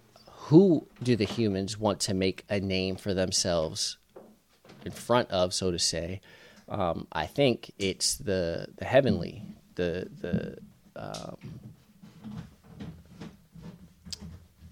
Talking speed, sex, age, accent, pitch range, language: 100 wpm, male, 30-49, American, 100-125 Hz, English